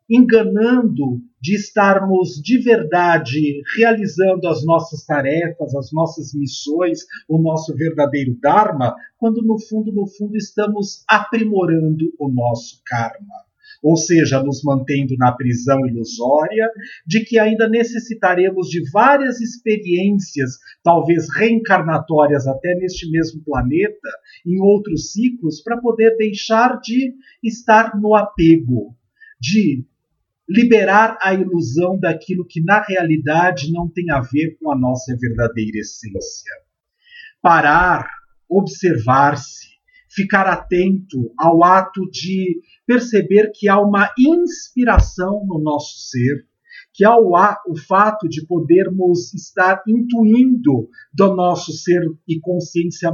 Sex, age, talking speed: male, 50-69, 115 wpm